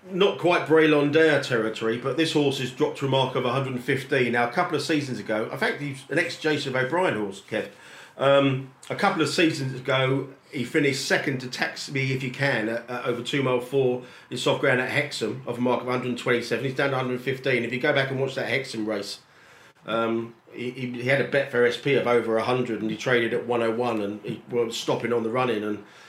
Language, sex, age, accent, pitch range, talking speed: English, male, 40-59, British, 120-140 Hz, 225 wpm